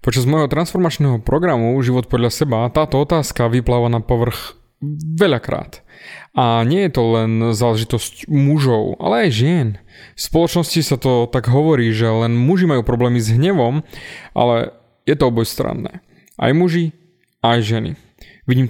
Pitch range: 120-155 Hz